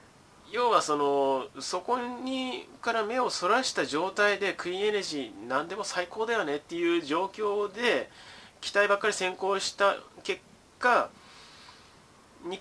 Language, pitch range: Japanese, 140-215 Hz